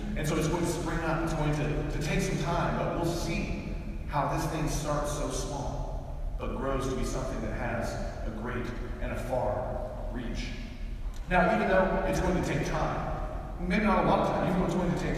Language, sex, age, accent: English, male, 40-59, American